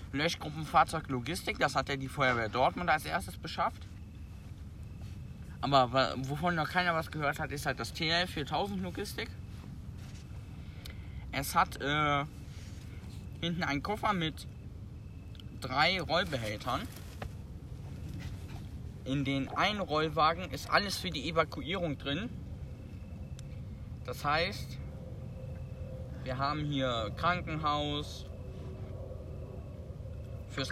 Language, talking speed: German, 100 wpm